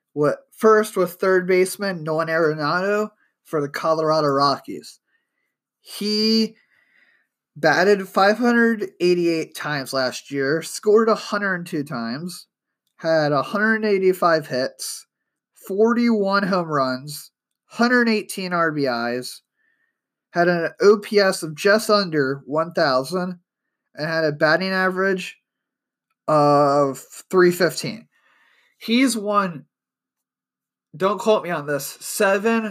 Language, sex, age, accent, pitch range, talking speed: English, male, 20-39, American, 155-200 Hz, 90 wpm